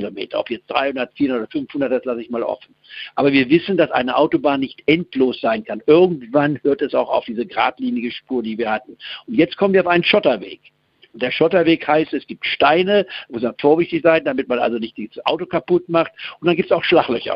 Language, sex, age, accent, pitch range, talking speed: German, male, 60-79, German, 120-160 Hz, 220 wpm